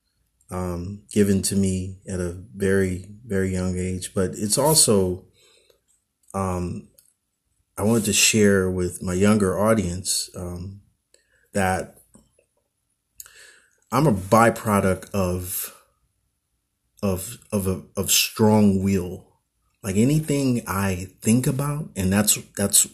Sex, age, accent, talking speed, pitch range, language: male, 30-49, American, 110 wpm, 95-150 Hz, English